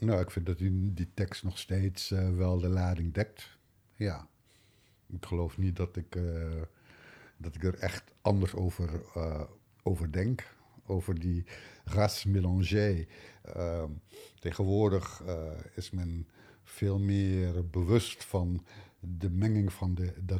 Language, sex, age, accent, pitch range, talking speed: Dutch, male, 50-69, Dutch, 90-105 Hz, 135 wpm